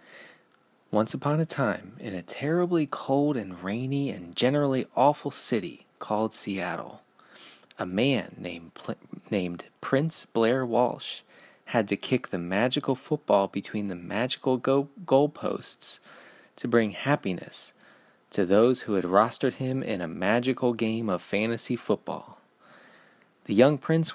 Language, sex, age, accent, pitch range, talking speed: English, male, 30-49, American, 105-135 Hz, 135 wpm